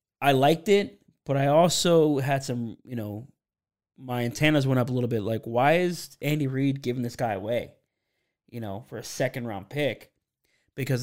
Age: 20-39